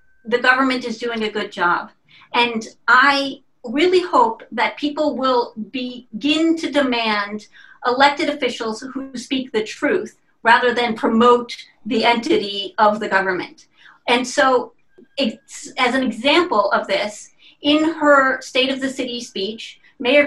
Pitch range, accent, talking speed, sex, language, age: 245-310 Hz, American, 140 wpm, female, English, 40-59